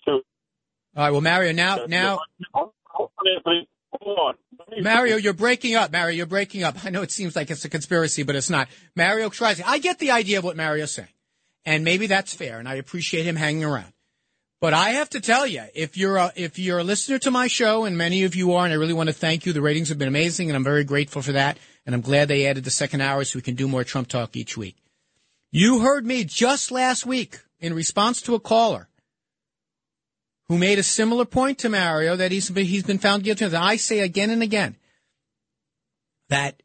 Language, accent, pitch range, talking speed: English, American, 160-220 Hz, 215 wpm